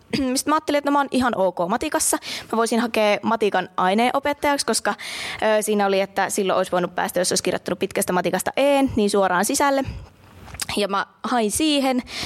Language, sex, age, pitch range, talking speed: Finnish, female, 20-39, 190-250 Hz, 170 wpm